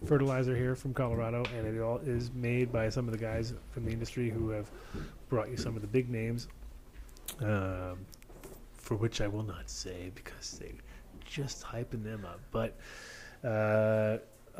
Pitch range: 105-130 Hz